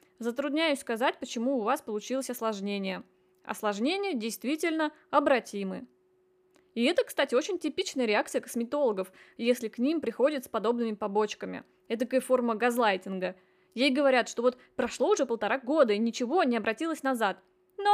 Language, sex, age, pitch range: Russian, female, 20-39, 220-300 Hz